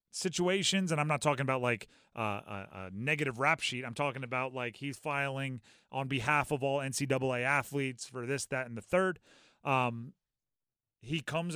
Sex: male